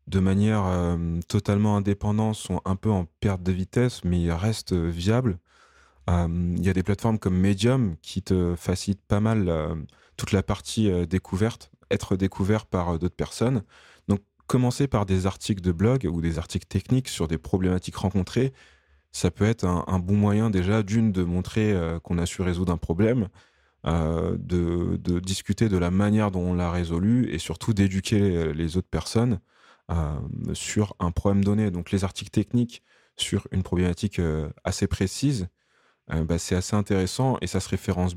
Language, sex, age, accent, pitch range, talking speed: French, male, 20-39, French, 90-110 Hz, 185 wpm